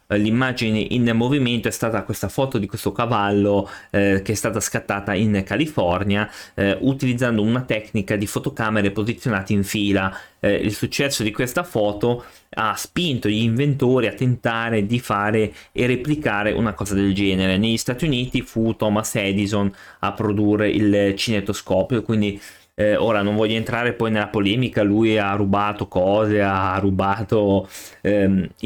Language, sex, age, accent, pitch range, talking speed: Italian, male, 20-39, native, 100-130 Hz, 150 wpm